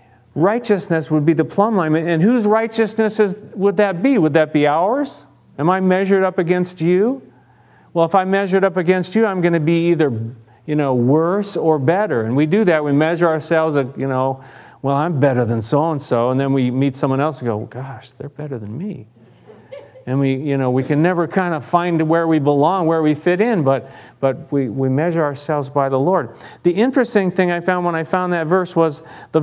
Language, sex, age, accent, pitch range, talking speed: English, male, 40-59, American, 140-195 Hz, 215 wpm